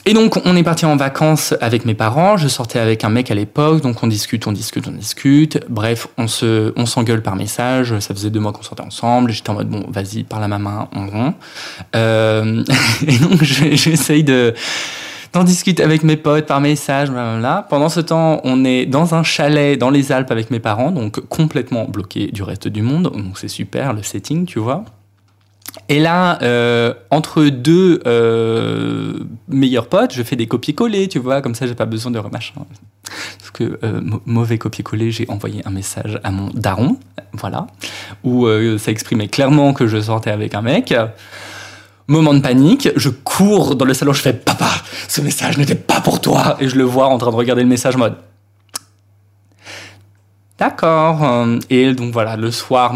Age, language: 20-39, French